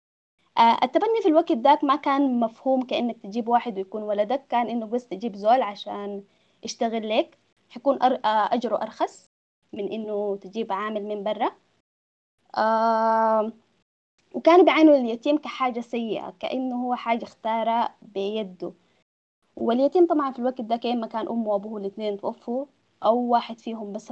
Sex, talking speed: female, 135 wpm